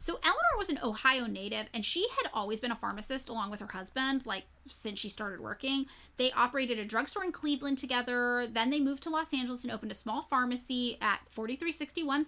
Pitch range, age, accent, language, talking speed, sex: 225-295 Hz, 10-29, American, English, 205 wpm, female